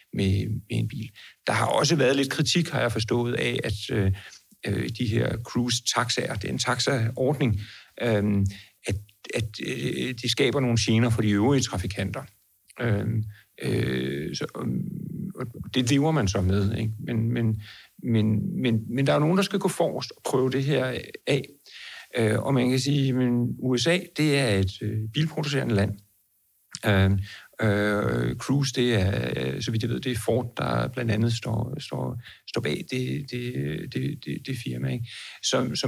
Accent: native